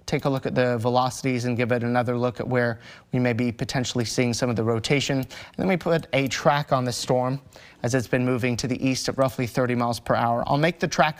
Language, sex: English, male